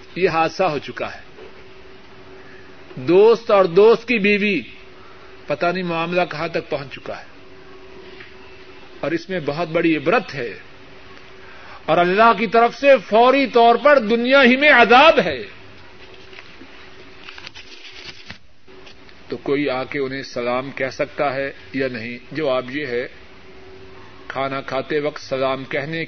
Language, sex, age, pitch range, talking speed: Urdu, male, 50-69, 135-175 Hz, 130 wpm